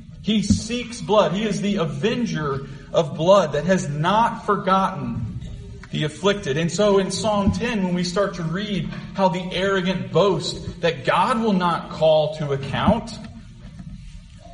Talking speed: 150 wpm